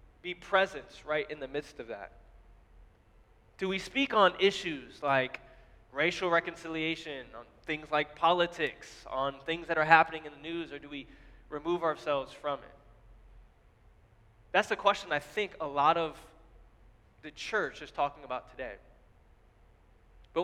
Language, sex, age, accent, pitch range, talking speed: English, male, 20-39, American, 130-180 Hz, 145 wpm